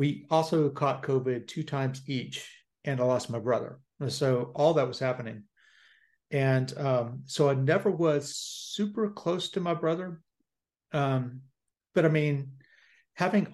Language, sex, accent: English, male, American